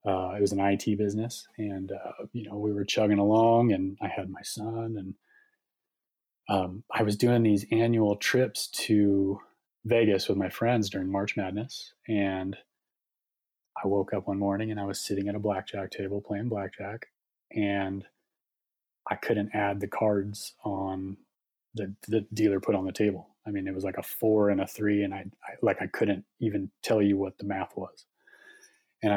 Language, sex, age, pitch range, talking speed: English, male, 30-49, 100-110 Hz, 180 wpm